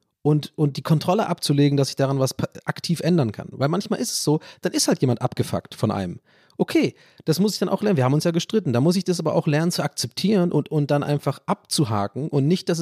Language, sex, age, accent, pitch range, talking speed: German, male, 30-49, German, 125-170 Hz, 250 wpm